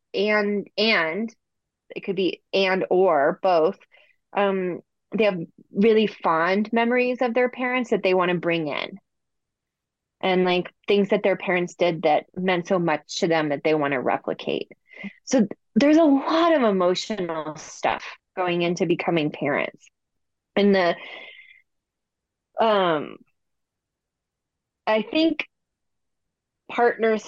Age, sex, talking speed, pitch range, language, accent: 20-39, female, 130 wpm, 180-230 Hz, English, American